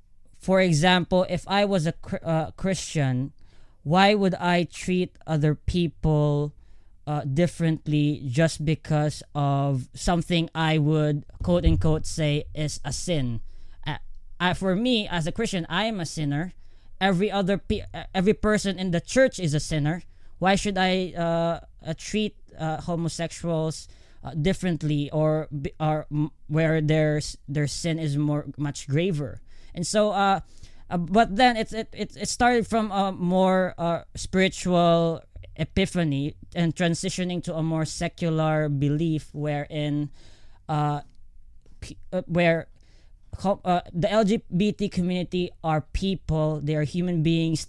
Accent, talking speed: Filipino, 135 wpm